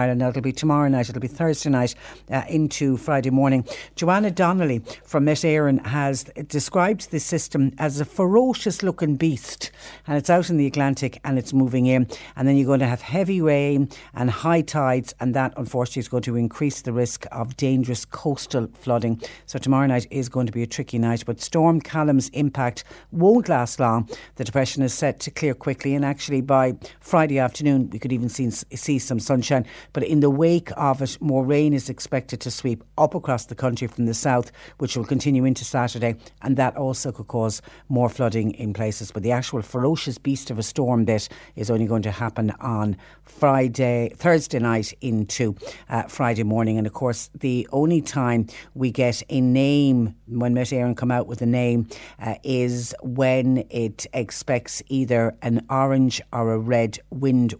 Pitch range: 120-140 Hz